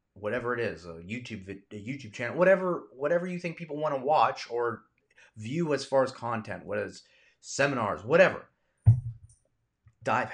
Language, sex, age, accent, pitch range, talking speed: English, male, 30-49, American, 110-155 Hz, 155 wpm